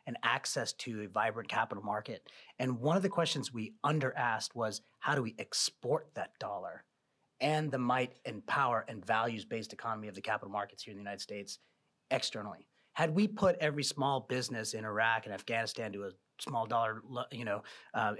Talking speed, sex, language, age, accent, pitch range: 190 wpm, male, English, 30-49, American, 120-160 Hz